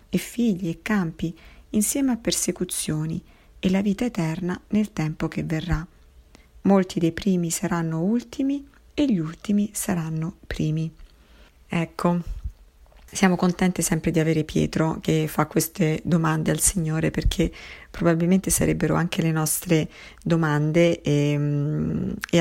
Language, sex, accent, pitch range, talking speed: Italian, female, native, 150-175 Hz, 125 wpm